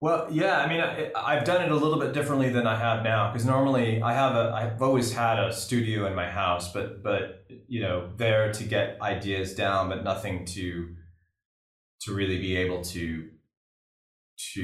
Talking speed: 190 wpm